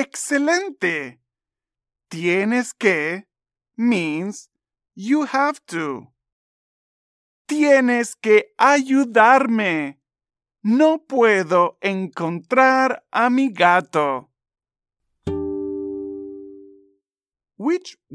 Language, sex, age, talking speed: Spanish, male, 40-59, 55 wpm